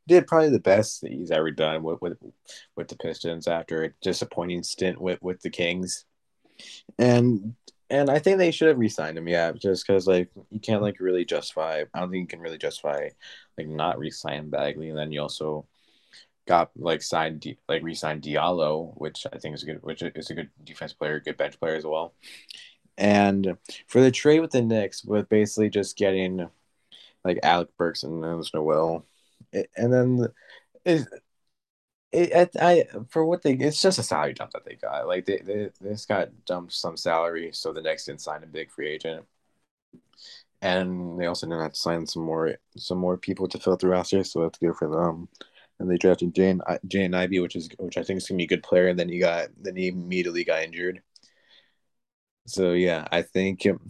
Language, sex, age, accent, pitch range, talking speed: English, male, 20-39, American, 85-105 Hz, 205 wpm